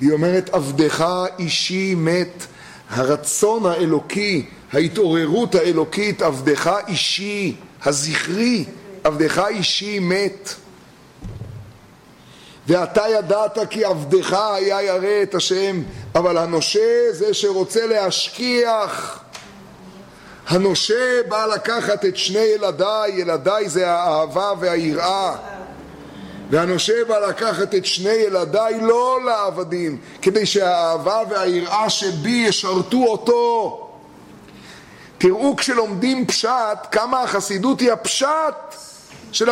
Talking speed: 90 wpm